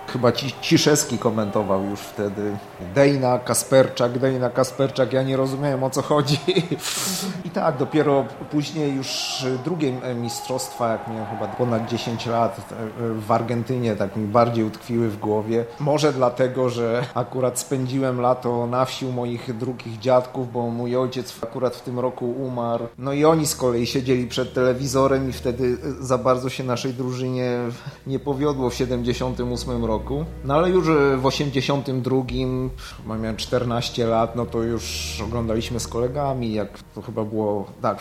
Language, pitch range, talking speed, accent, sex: Polish, 115-135 Hz, 155 wpm, native, male